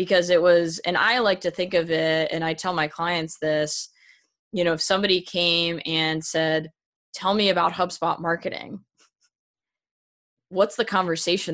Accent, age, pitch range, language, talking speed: American, 20-39, 160-180 Hz, English, 160 wpm